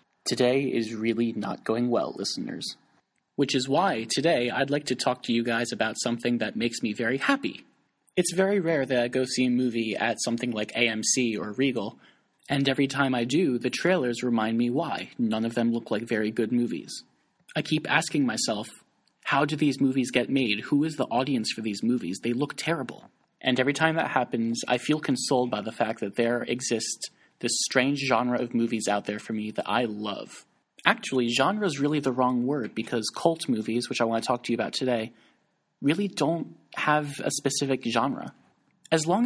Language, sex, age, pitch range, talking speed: English, male, 30-49, 115-145 Hz, 200 wpm